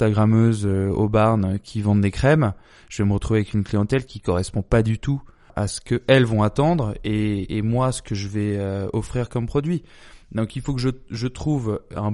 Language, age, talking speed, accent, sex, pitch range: French, 20-39, 210 wpm, French, male, 105-125 Hz